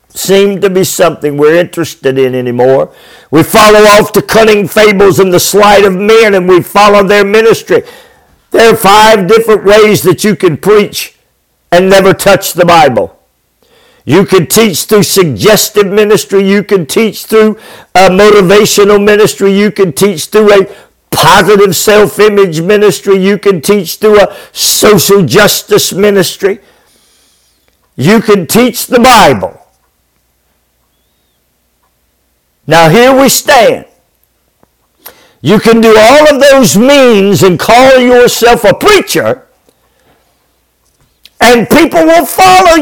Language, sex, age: English, male, 50-69